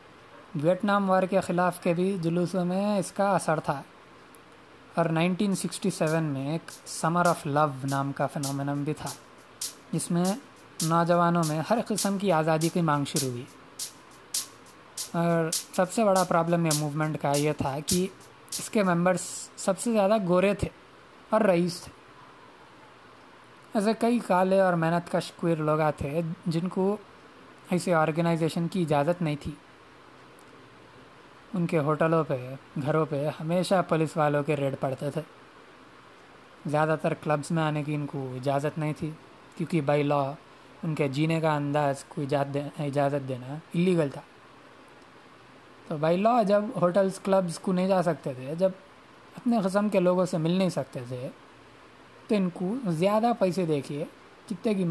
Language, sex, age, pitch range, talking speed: Urdu, male, 20-39, 150-185 Hz, 140 wpm